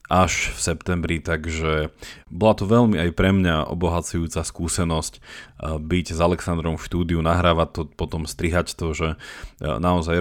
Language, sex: Slovak, male